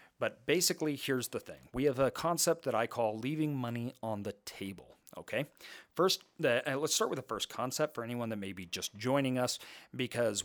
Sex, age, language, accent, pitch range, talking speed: male, 40-59, English, American, 110-135 Hz, 200 wpm